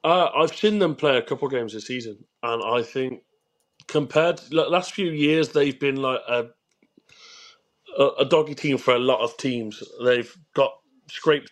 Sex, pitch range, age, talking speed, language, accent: male, 120-160 Hz, 30-49, 190 wpm, English, British